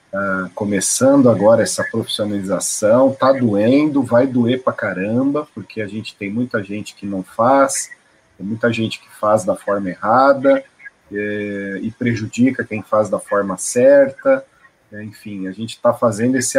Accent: Brazilian